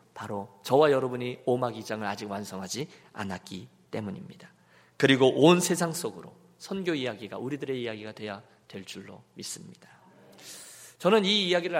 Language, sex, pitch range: Korean, male, 130-210 Hz